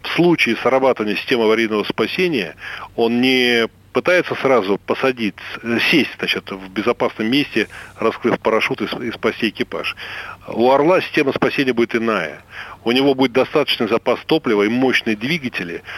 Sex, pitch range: male, 110-135 Hz